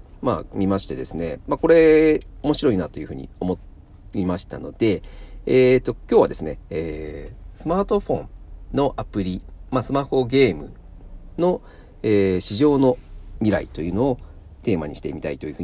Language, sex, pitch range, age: Japanese, male, 90-125 Hz, 40-59